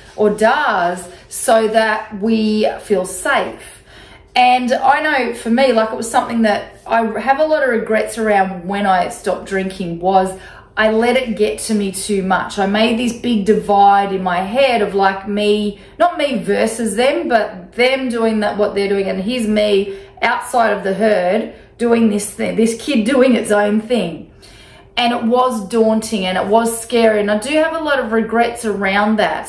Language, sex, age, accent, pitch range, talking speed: English, female, 30-49, Australian, 190-230 Hz, 190 wpm